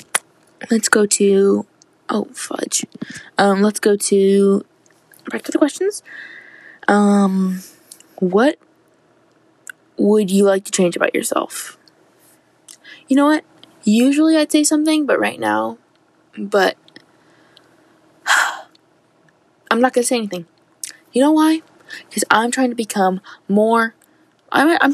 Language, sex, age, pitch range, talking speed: English, female, 10-29, 195-295 Hz, 125 wpm